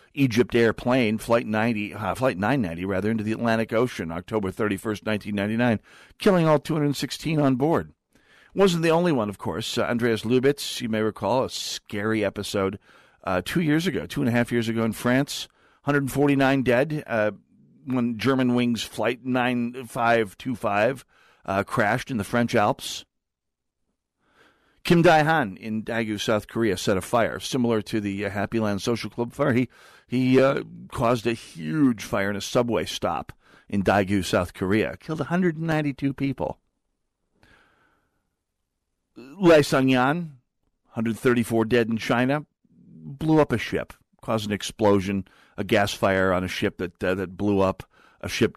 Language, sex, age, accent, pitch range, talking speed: English, male, 50-69, American, 100-135 Hz, 150 wpm